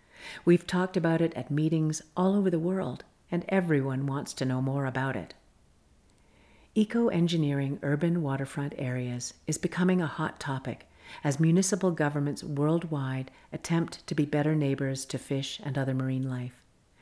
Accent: American